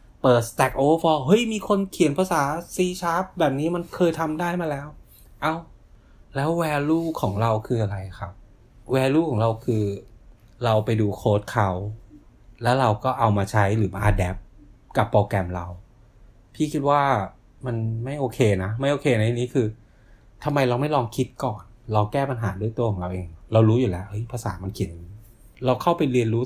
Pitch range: 105-135 Hz